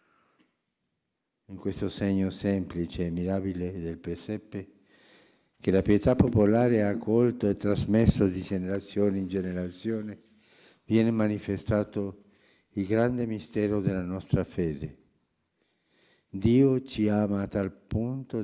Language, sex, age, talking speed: Italian, male, 60-79, 110 wpm